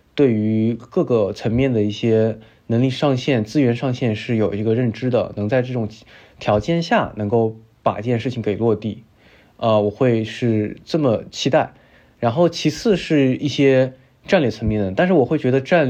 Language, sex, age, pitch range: Chinese, male, 20-39, 105-130 Hz